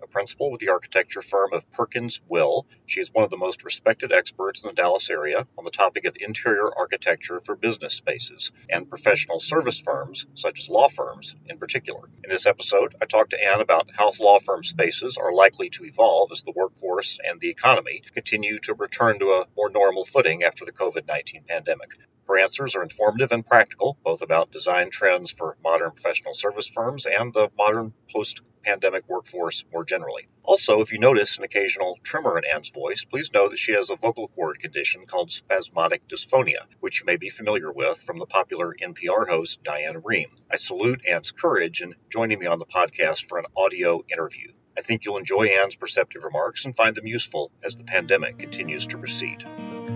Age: 40-59